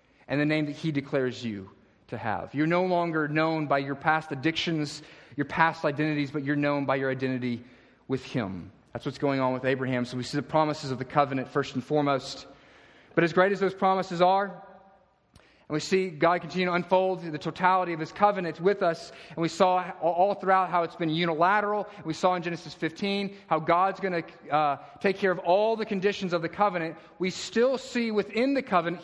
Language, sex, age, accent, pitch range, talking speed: English, male, 30-49, American, 155-200 Hz, 205 wpm